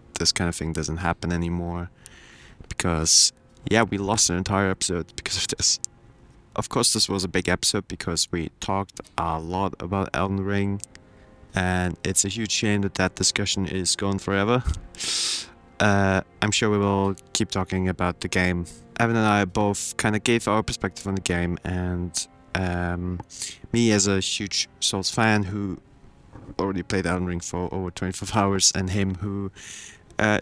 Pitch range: 90-105 Hz